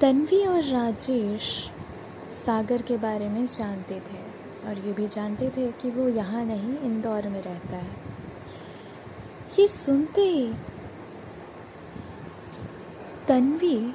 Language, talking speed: Hindi, 110 wpm